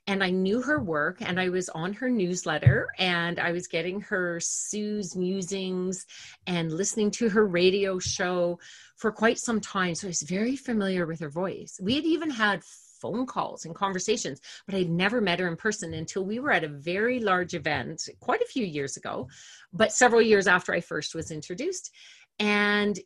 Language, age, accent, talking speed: English, 40-59, American, 190 wpm